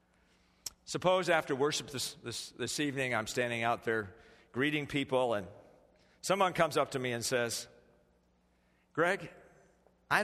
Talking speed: 135 wpm